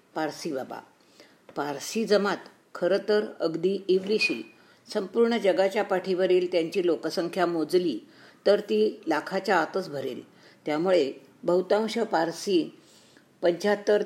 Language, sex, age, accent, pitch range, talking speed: Marathi, female, 50-69, native, 165-200 Hz, 100 wpm